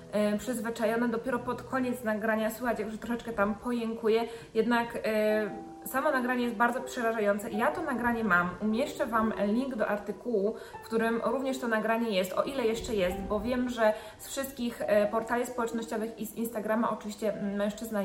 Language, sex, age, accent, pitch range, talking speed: Polish, female, 20-39, native, 215-250 Hz, 155 wpm